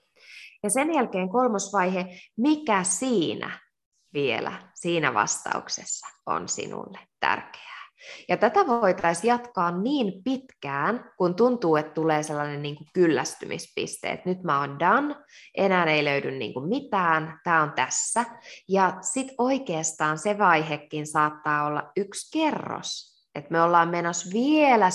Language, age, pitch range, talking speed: Finnish, 20-39, 155-220 Hz, 125 wpm